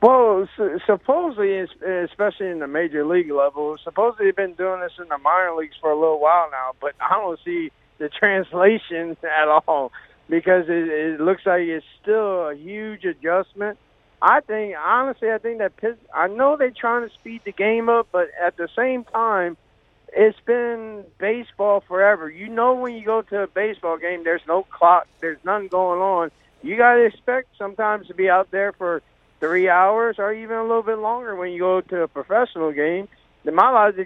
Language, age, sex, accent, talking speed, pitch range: English, 50-69, male, American, 190 wpm, 170-225 Hz